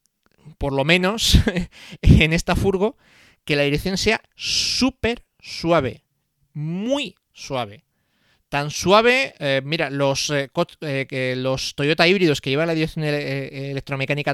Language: English